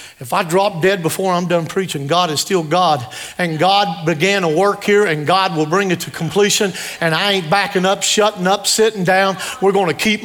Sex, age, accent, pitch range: male, 50-69, American, 180-245 Hz